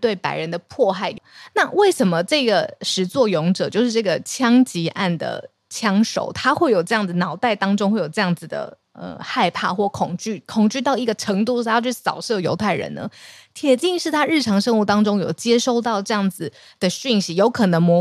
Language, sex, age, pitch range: Chinese, female, 20-39, 180-240 Hz